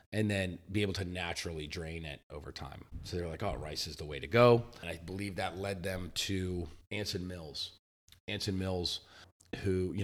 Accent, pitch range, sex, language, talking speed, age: American, 85-100 Hz, male, English, 205 wpm, 30-49